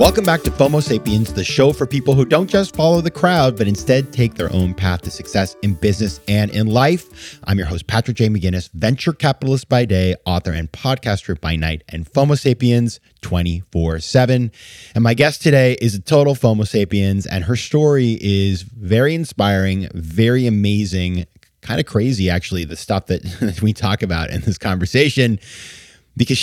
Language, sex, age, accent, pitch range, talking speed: English, male, 30-49, American, 90-120 Hz, 180 wpm